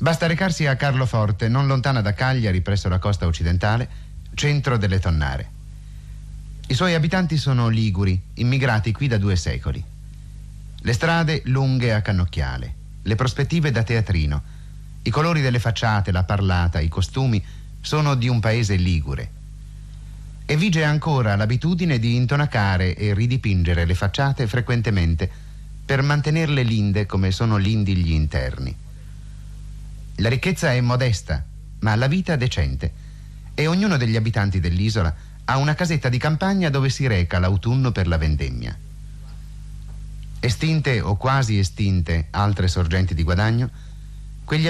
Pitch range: 95-135 Hz